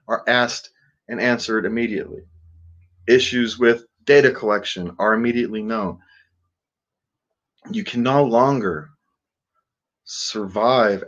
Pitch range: 115-150 Hz